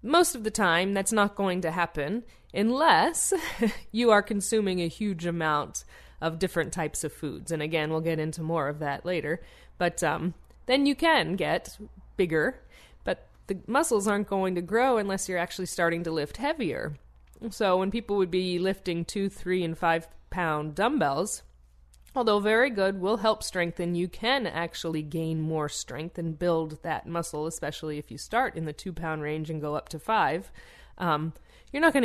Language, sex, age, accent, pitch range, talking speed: English, female, 20-39, American, 160-205 Hz, 180 wpm